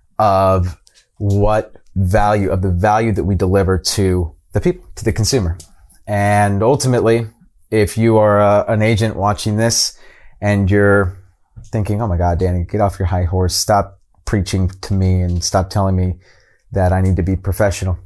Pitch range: 95-115 Hz